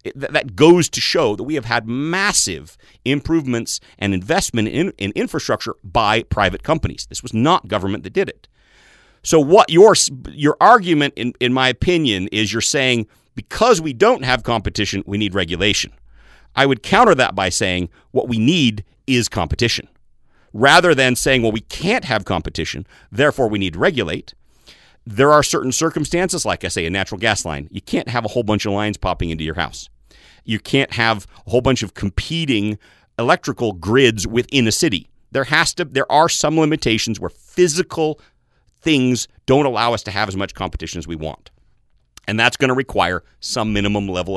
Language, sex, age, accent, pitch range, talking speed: English, male, 40-59, American, 100-135 Hz, 180 wpm